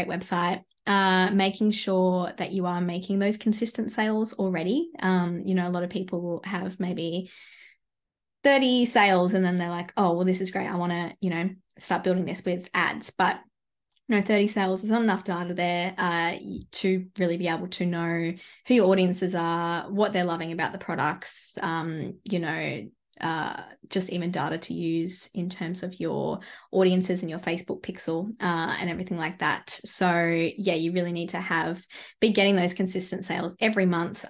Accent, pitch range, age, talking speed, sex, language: Australian, 170-195 Hz, 20-39, 185 wpm, female, English